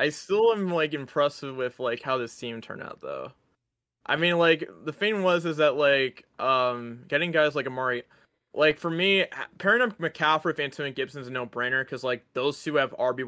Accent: American